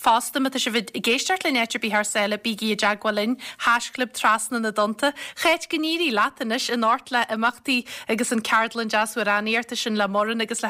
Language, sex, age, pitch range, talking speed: English, female, 30-49, 210-240 Hz, 155 wpm